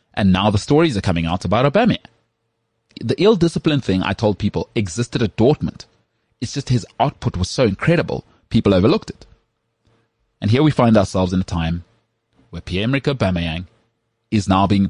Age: 30-49